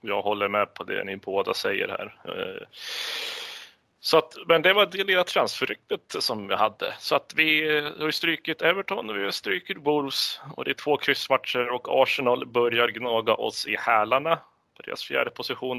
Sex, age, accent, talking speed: male, 30-49, native, 180 wpm